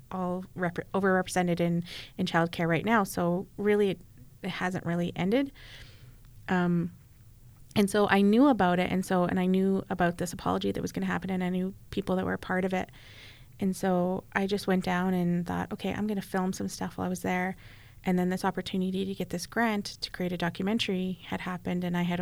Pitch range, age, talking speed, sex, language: 165-200 Hz, 30-49, 215 wpm, female, English